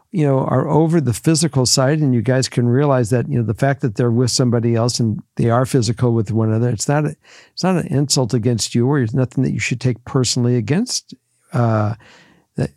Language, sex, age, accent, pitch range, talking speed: English, male, 60-79, American, 120-145 Hz, 230 wpm